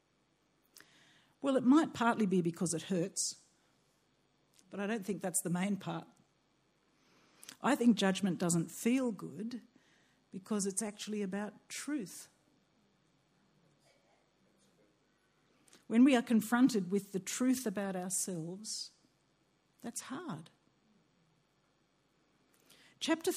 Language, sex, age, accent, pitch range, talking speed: English, female, 60-79, Australian, 170-225 Hz, 100 wpm